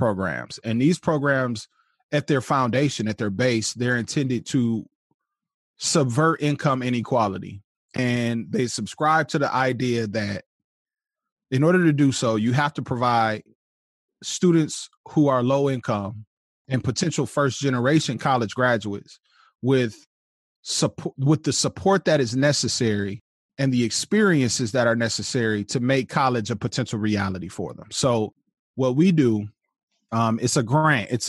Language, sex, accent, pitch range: English, male, American, 110-140 Hz